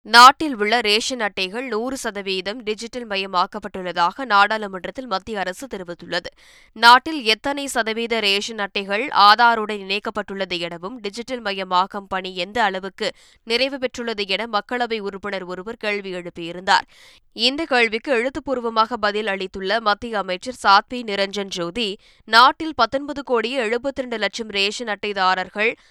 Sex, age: female, 20-39